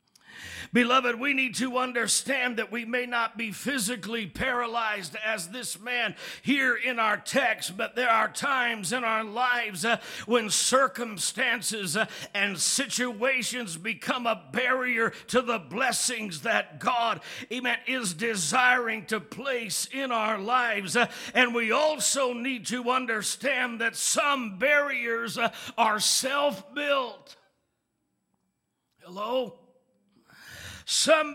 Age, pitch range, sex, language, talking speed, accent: 50-69, 220-260 Hz, male, English, 115 wpm, American